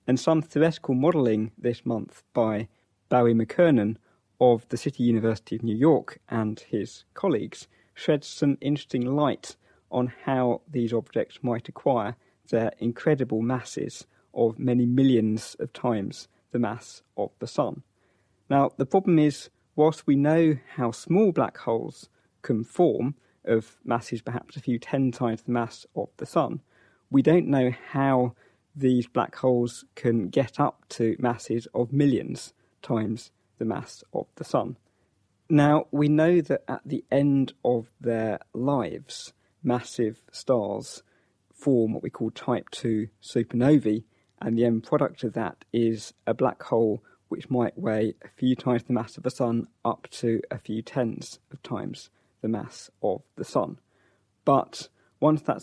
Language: English